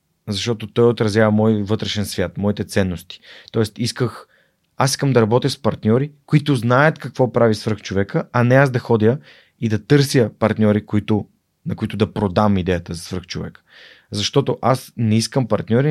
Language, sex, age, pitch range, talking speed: Bulgarian, male, 30-49, 100-125 Hz, 160 wpm